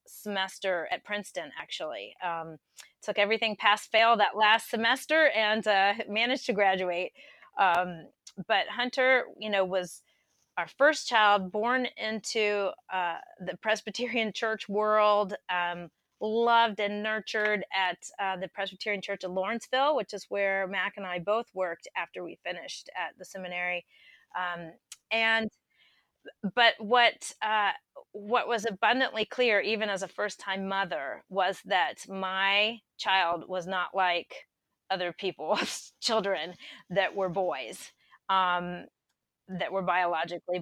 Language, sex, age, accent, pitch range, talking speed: English, female, 30-49, American, 185-225 Hz, 130 wpm